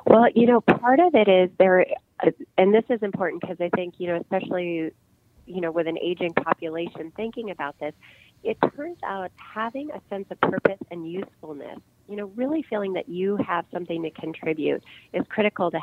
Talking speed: 195 wpm